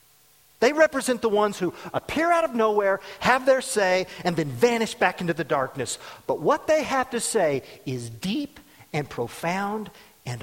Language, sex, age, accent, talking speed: English, male, 40-59, American, 175 wpm